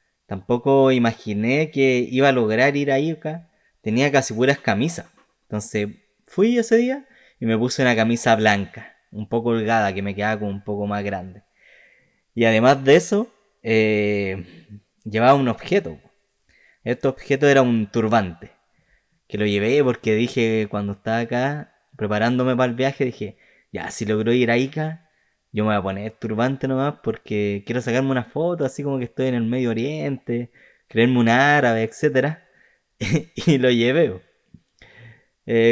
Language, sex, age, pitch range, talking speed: Spanish, male, 20-39, 110-135 Hz, 160 wpm